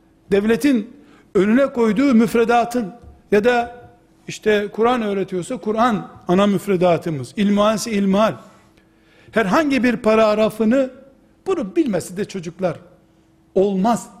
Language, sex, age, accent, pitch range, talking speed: Turkish, male, 60-79, native, 175-230 Hz, 95 wpm